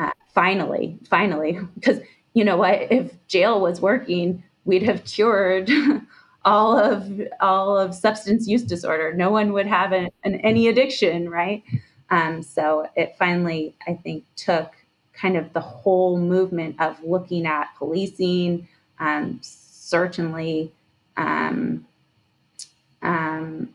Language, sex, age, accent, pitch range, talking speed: English, female, 20-39, American, 160-190 Hz, 125 wpm